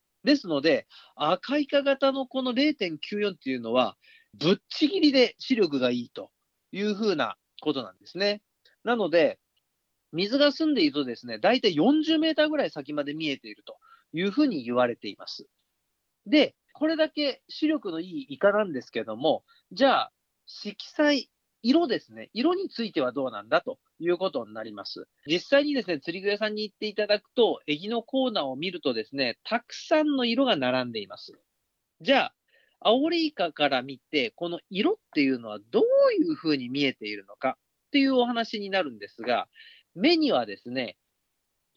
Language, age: Japanese, 40-59